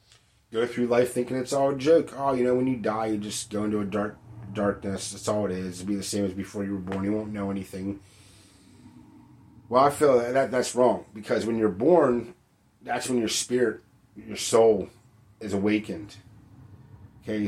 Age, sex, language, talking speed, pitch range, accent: 30-49, male, English, 200 wpm, 100-120 Hz, American